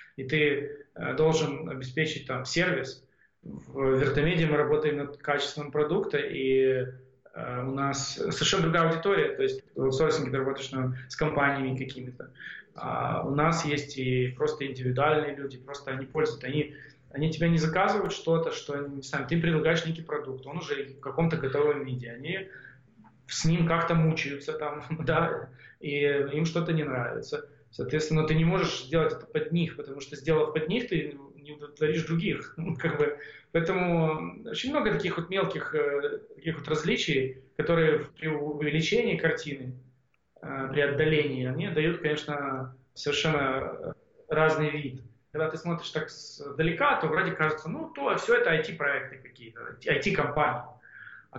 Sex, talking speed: male, 150 wpm